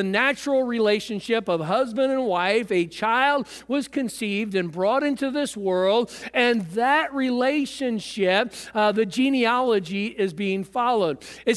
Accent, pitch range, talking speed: American, 200-250 Hz, 130 wpm